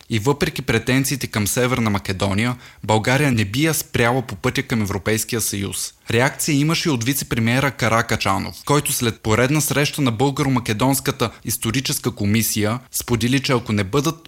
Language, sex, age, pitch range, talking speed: Bulgarian, male, 20-39, 110-140 Hz, 145 wpm